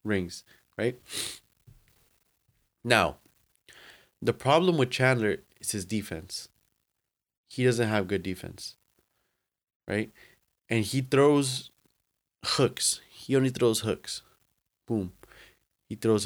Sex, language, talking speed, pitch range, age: male, English, 115 wpm, 105-135 Hz, 20-39